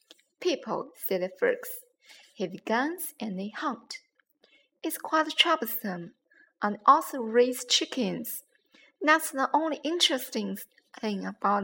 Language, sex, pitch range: Chinese, female, 220-300 Hz